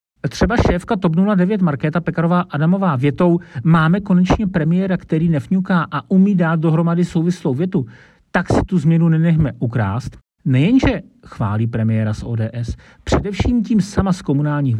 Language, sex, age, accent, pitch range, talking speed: Czech, male, 40-59, native, 130-185 Hz, 140 wpm